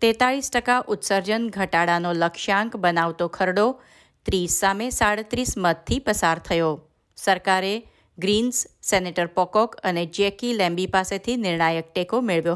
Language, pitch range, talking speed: Gujarati, 175-225 Hz, 115 wpm